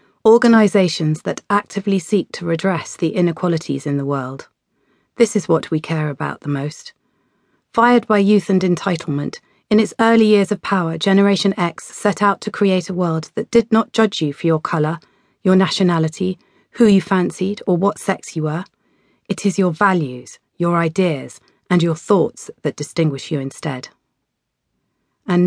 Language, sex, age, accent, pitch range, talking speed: English, female, 30-49, British, 155-200 Hz, 165 wpm